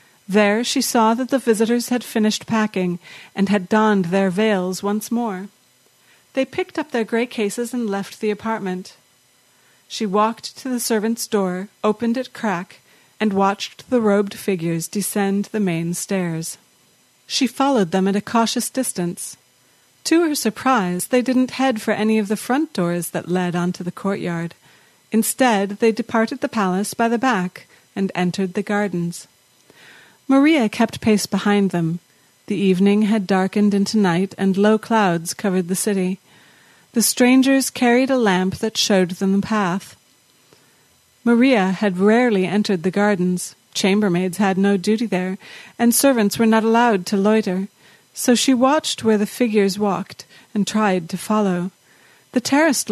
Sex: female